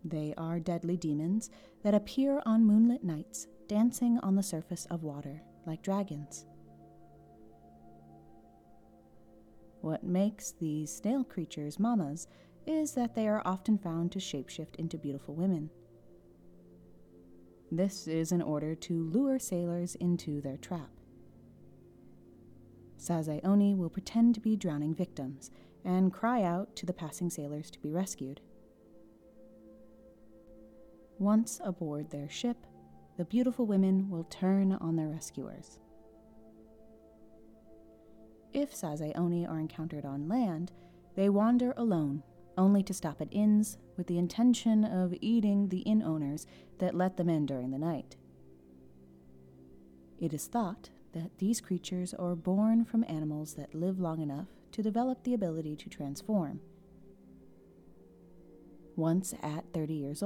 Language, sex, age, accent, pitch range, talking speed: English, female, 30-49, American, 135-195 Hz, 125 wpm